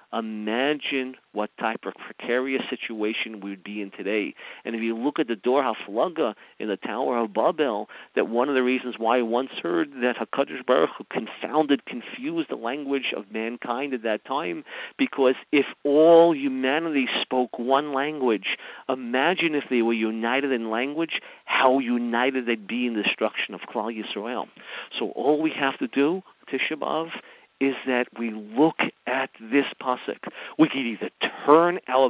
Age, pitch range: 50-69, 115-145 Hz